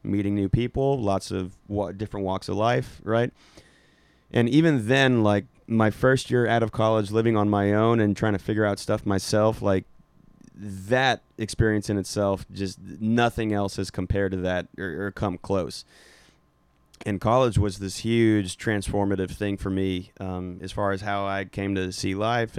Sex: male